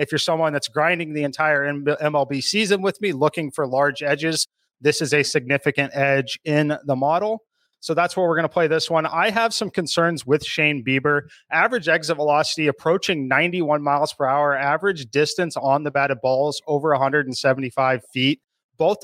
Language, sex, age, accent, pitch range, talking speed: English, male, 30-49, American, 140-170 Hz, 180 wpm